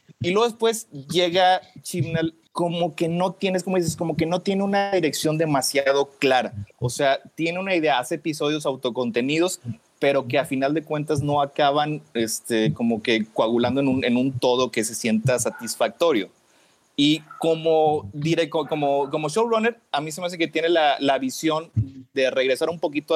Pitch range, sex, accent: 125-165 Hz, male, Mexican